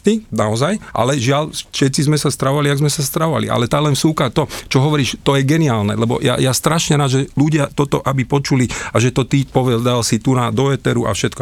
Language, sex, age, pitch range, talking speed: Slovak, male, 40-59, 115-145 Hz, 230 wpm